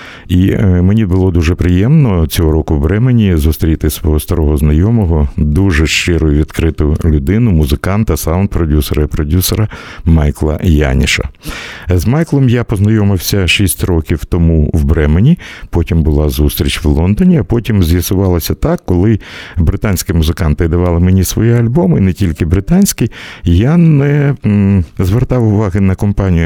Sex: male